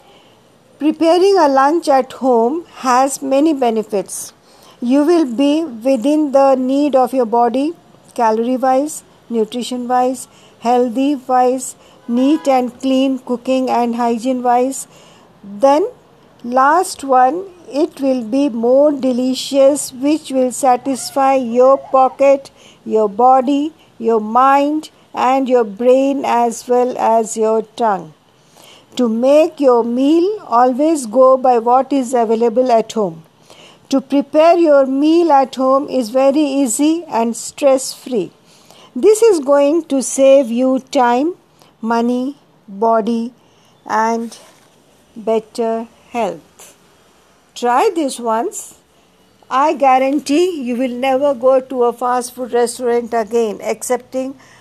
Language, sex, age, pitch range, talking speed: Hindi, female, 50-69, 240-275 Hz, 120 wpm